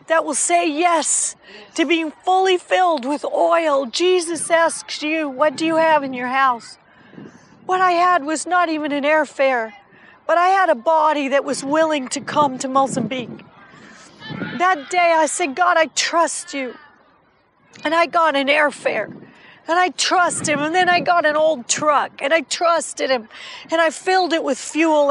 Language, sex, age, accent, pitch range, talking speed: English, female, 40-59, American, 285-350 Hz, 175 wpm